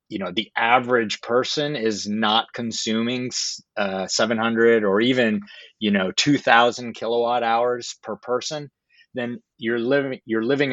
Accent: American